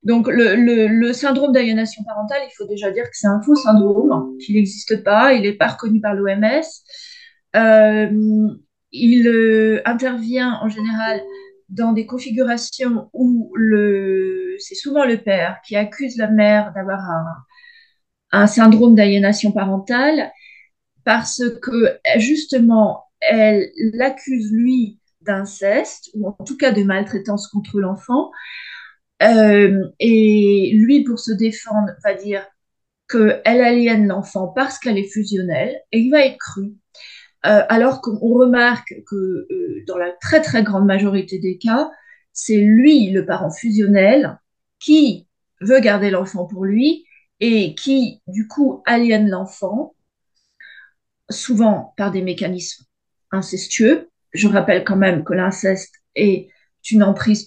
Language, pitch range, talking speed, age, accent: French, 200-250 Hz, 135 wpm, 30-49, French